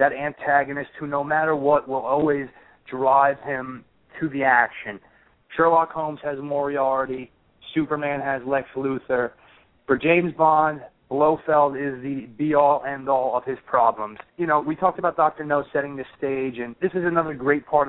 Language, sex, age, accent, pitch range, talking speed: English, male, 30-49, American, 130-165 Hz, 160 wpm